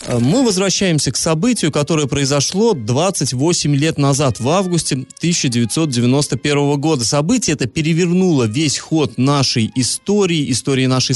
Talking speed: 120 wpm